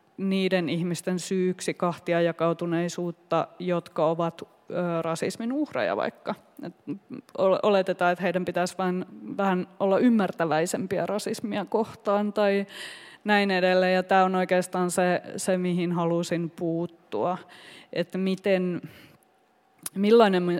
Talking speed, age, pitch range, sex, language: 100 wpm, 20-39, 175-195 Hz, female, Finnish